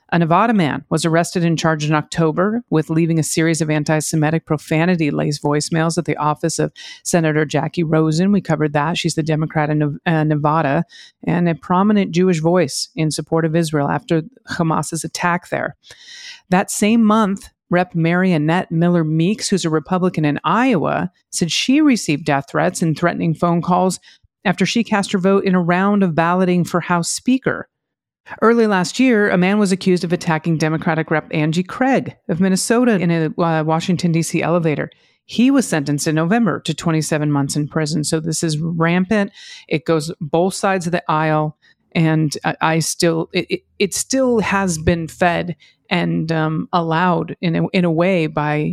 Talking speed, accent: 170 wpm, American